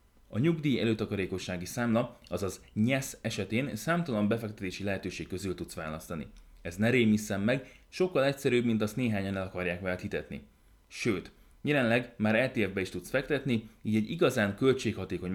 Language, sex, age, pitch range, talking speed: Hungarian, male, 30-49, 95-120 Hz, 145 wpm